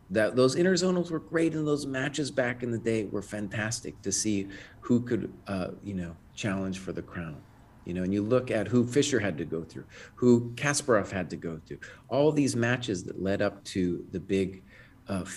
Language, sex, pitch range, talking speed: English, male, 100-130 Hz, 205 wpm